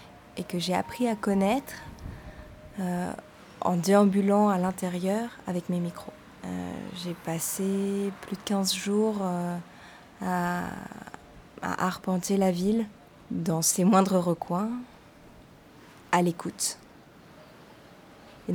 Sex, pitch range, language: female, 180-205 Hz, French